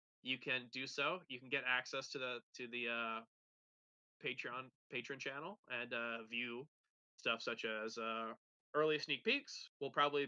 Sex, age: male, 20-39